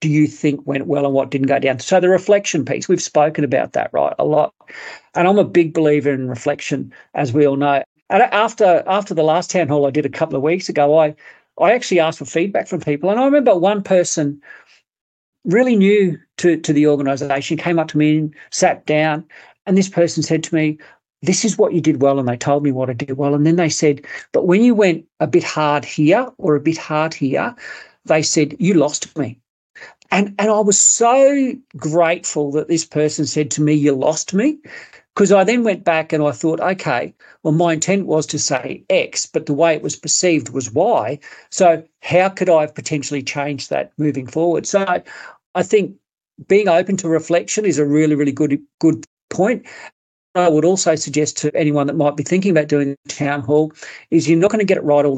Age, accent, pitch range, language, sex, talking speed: 50-69, Australian, 145-180 Hz, English, male, 215 wpm